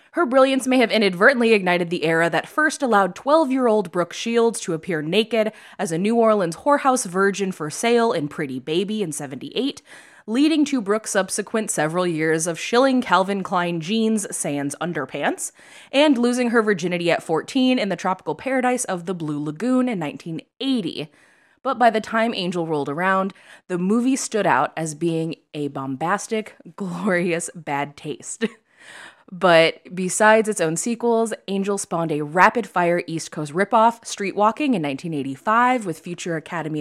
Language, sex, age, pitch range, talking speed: English, female, 20-39, 165-225 Hz, 155 wpm